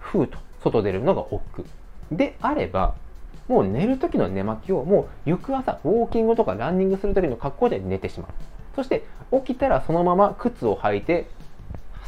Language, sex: Japanese, male